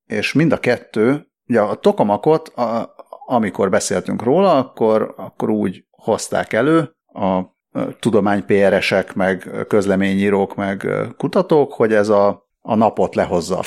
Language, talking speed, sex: Hungarian, 125 wpm, male